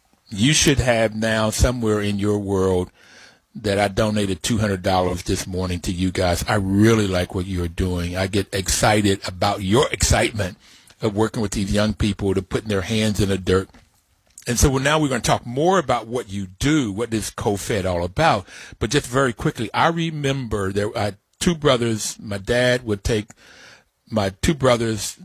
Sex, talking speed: male, 185 wpm